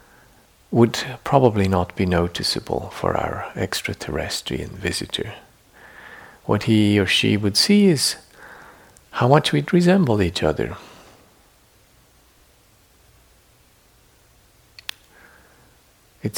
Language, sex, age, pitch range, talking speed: English, male, 50-69, 100-120 Hz, 85 wpm